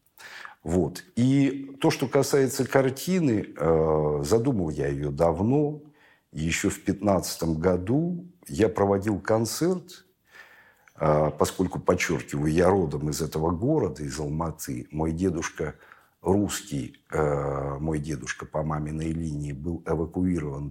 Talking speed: 105 wpm